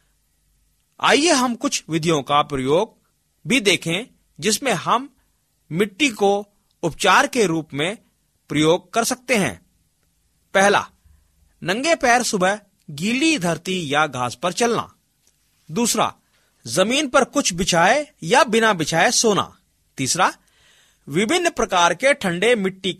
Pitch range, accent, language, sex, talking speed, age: 145-240 Hz, native, Hindi, male, 115 wpm, 40-59